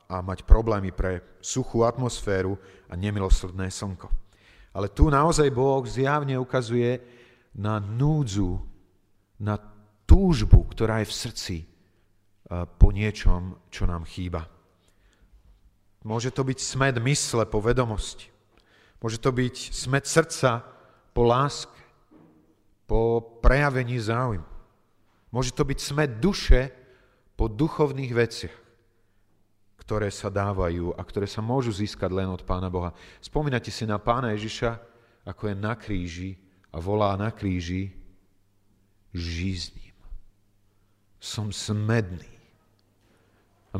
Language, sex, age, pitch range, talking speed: Slovak, male, 40-59, 95-115 Hz, 115 wpm